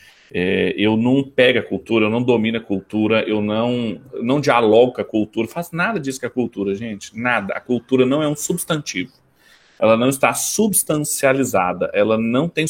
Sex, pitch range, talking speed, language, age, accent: male, 115-155 Hz, 180 wpm, Portuguese, 40-59, Brazilian